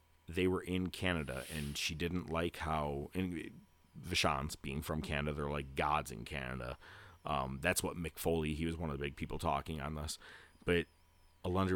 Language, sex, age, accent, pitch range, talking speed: English, male, 30-49, American, 80-95 Hz, 180 wpm